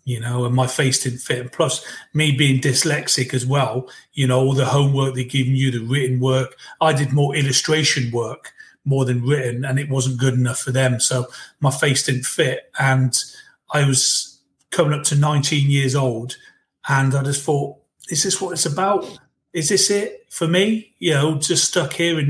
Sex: male